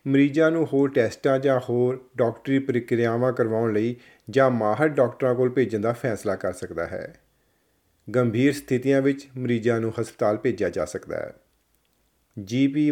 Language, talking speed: Punjabi, 145 wpm